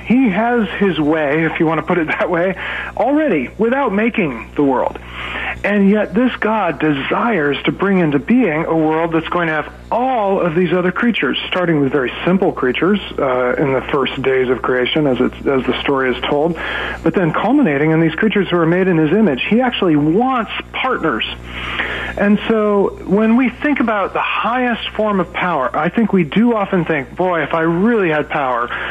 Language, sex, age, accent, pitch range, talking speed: English, male, 40-59, American, 145-205 Hz, 195 wpm